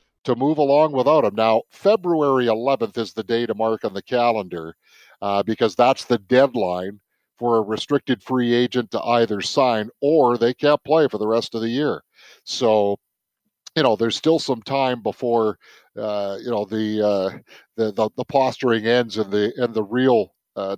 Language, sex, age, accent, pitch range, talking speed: English, male, 50-69, American, 105-135 Hz, 180 wpm